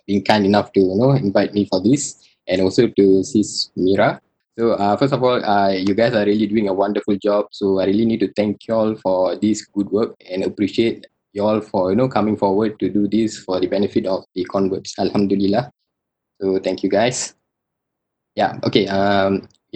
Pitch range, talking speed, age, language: 95-105 Hz, 195 wpm, 20-39, English